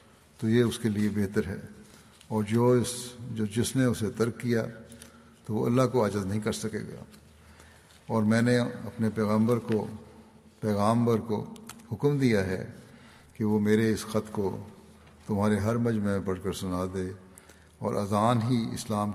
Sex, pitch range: male, 100-115 Hz